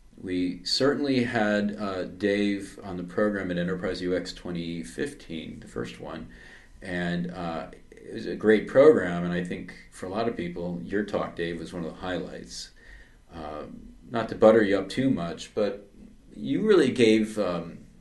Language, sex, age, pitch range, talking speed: English, male, 40-59, 85-115 Hz, 175 wpm